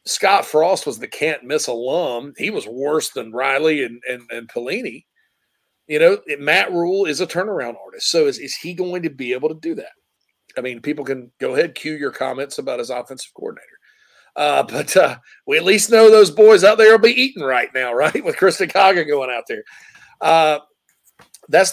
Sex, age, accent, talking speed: male, 40-59, American, 205 wpm